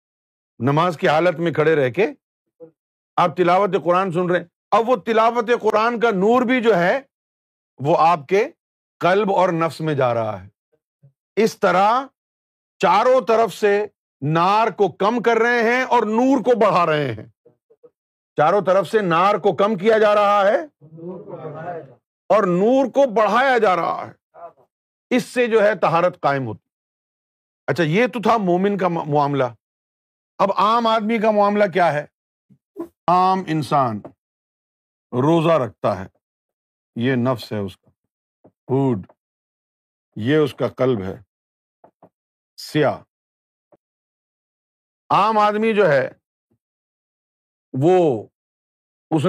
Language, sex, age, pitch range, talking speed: Urdu, male, 50-69, 140-210 Hz, 135 wpm